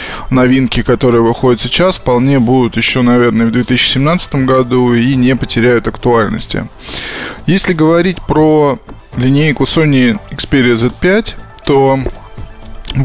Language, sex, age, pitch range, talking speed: Russian, male, 20-39, 120-150 Hz, 110 wpm